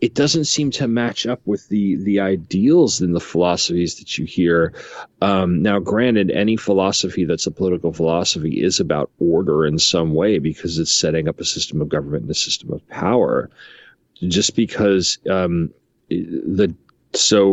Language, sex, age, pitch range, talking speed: English, male, 40-59, 80-100 Hz, 170 wpm